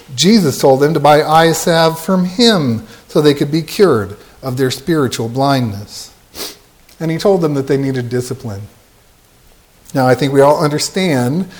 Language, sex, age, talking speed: English, male, 50-69, 165 wpm